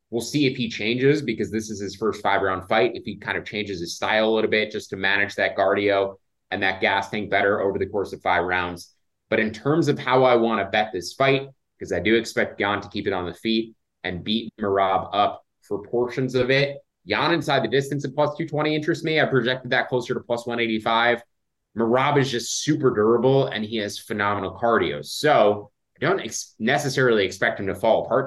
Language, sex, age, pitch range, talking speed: English, male, 20-39, 100-135 Hz, 220 wpm